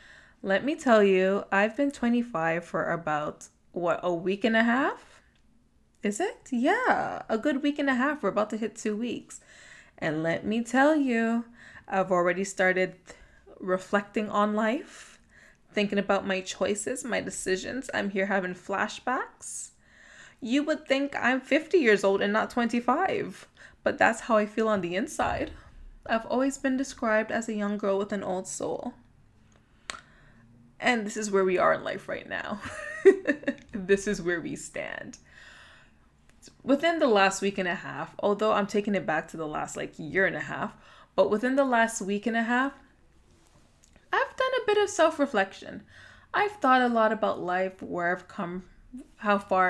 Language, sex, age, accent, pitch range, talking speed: English, female, 20-39, American, 190-260 Hz, 170 wpm